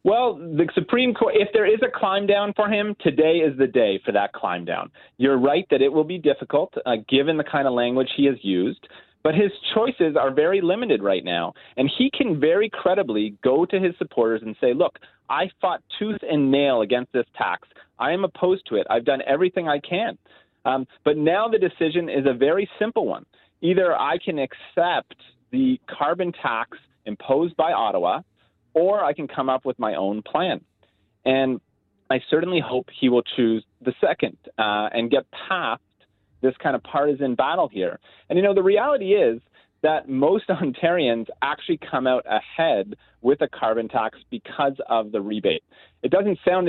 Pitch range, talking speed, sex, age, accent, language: 125-190 Hz, 190 wpm, male, 30-49, American, English